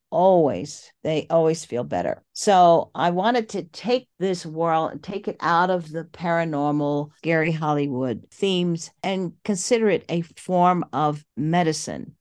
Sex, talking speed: female, 145 wpm